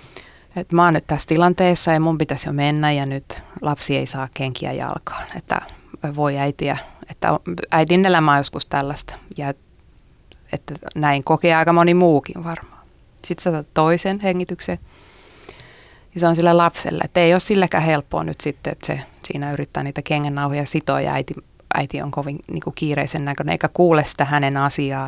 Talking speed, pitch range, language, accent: 170 wpm, 140-170 Hz, Finnish, native